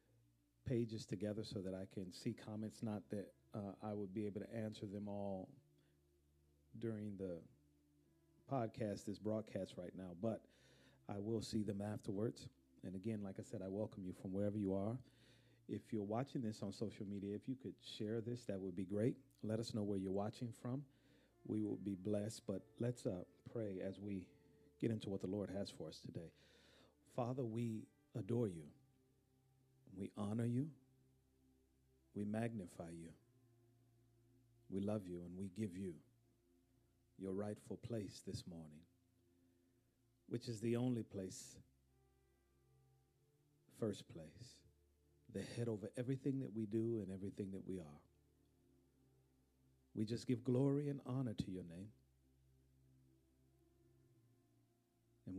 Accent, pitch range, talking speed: American, 90-120 Hz, 150 wpm